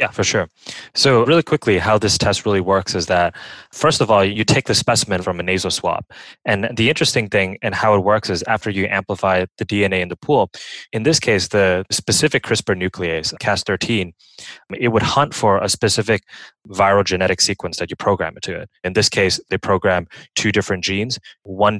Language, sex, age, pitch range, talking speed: English, male, 20-39, 90-110 Hz, 200 wpm